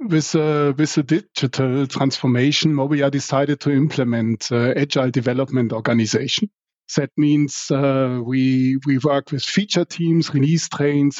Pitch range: 135-160 Hz